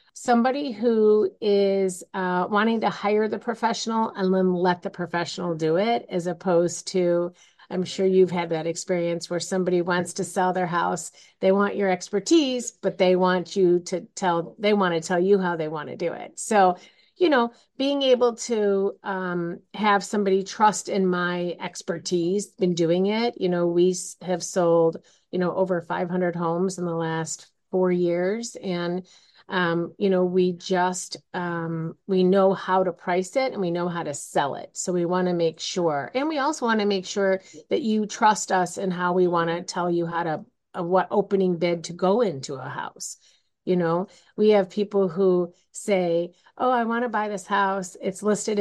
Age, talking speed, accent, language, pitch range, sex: 40-59, 190 wpm, American, English, 175-205 Hz, female